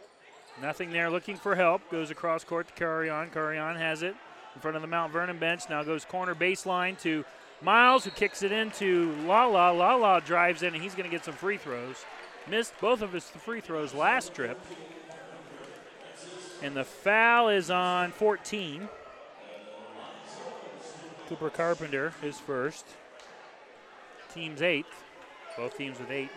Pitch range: 150-195 Hz